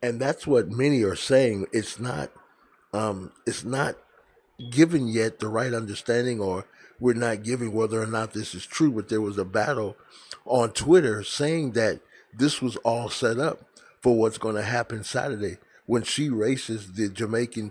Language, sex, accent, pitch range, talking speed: English, male, American, 115-155 Hz, 175 wpm